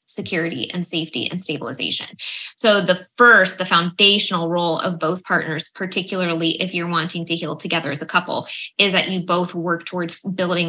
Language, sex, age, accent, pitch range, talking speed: English, female, 20-39, American, 170-190 Hz, 175 wpm